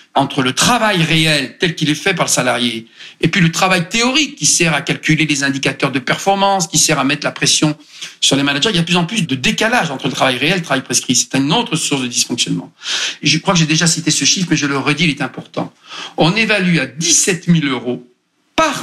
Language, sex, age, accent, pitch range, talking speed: French, male, 50-69, French, 130-170 Hz, 250 wpm